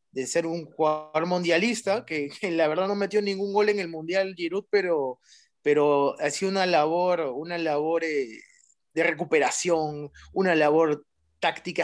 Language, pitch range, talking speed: Spanish, 160-225 Hz, 155 wpm